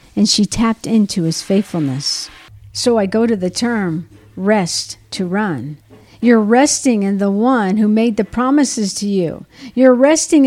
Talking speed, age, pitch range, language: 160 wpm, 50-69, 185-240 Hz, English